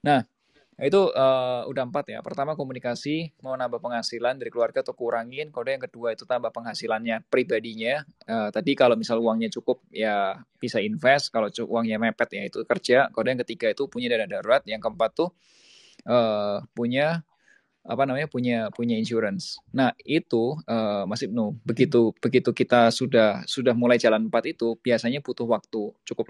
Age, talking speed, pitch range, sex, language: 20-39, 165 wpm, 115-130 Hz, male, Indonesian